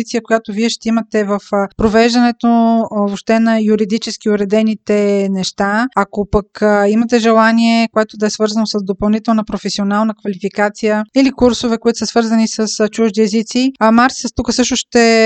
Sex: female